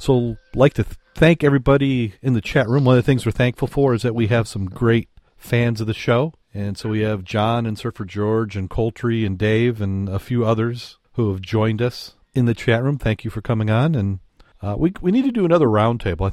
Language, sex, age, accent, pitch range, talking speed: English, male, 40-59, American, 95-125 Hz, 245 wpm